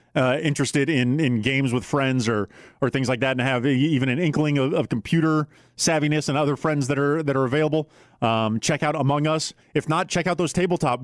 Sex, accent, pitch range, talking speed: male, American, 125-155 Hz, 215 wpm